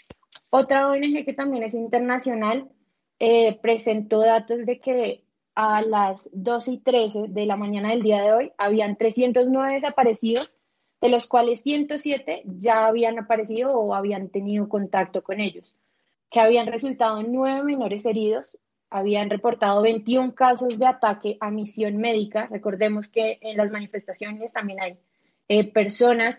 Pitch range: 210-245 Hz